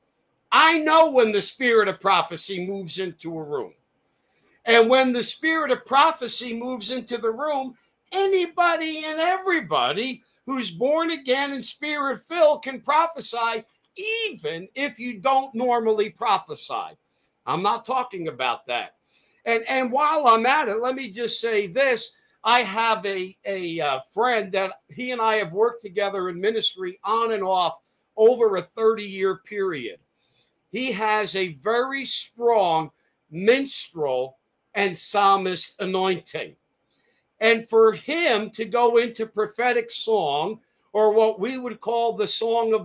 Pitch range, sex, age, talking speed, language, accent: 210-260 Hz, male, 50-69, 140 wpm, English, American